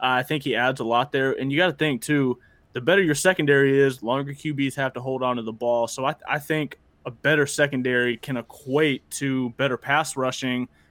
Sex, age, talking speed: male, 20-39, 220 wpm